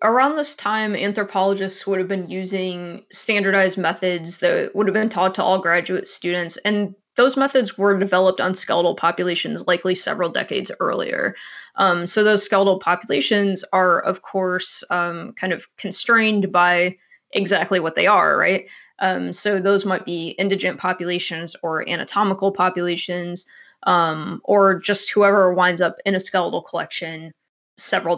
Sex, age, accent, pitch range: female, 20-39, American, 180-210 Hz